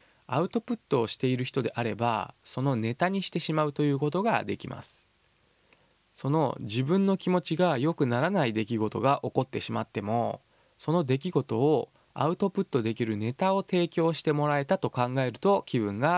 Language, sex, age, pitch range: Japanese, male, 20-39, 115-160 Hz